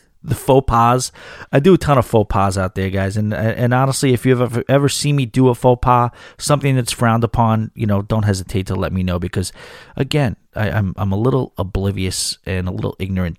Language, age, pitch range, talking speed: English, 30-49, 105-135 Hz, 225 wpm